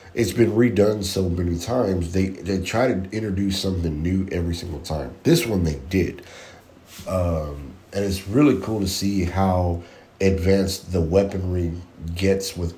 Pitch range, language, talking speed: 85-100 Hz, English, 155 wpm